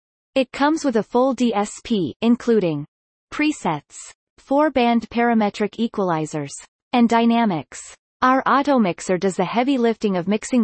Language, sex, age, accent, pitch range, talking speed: English, female, 30-49, American, 185-245 Hz, 125 wpm